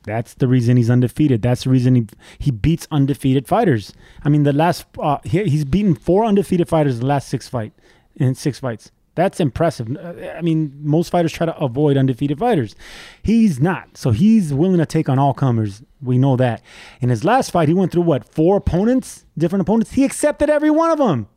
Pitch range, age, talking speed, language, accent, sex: 125-165 Hz, 20-39, 210 wpm, English, American, male